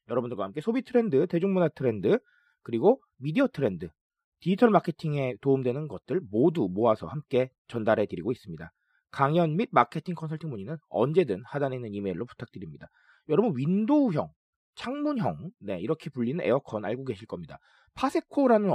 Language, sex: Korean, male